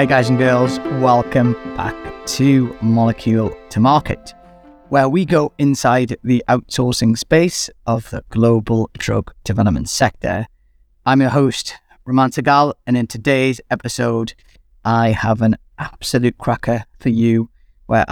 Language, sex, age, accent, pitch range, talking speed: English, male, 30-49, British, 105-120 Hz, 135 wpm